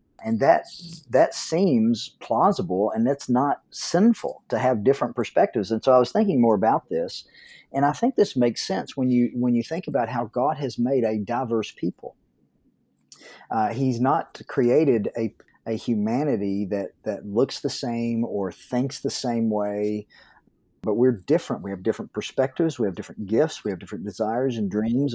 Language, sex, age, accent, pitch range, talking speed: English, male, 40-59, American, 110-140 Hz, 175 wpm